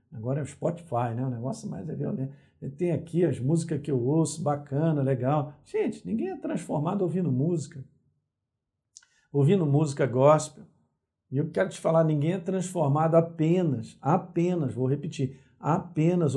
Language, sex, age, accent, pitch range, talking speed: Portuguese, male, 50-69, Brazilian, 130-155 Hz, 150 wpm